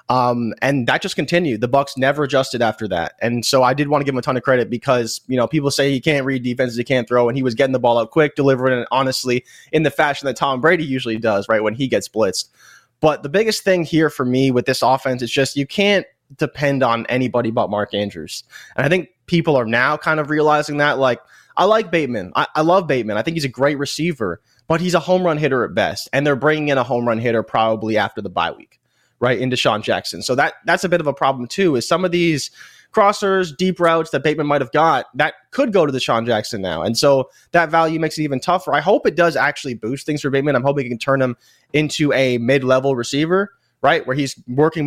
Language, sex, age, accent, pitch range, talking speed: English, male, 20-39, American, 125-155 Hz, 250 wpm